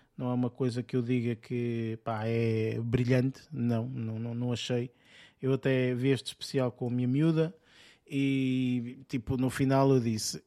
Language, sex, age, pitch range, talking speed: Portuguese, male, 20-39, 115-135 Hz, 180 wpm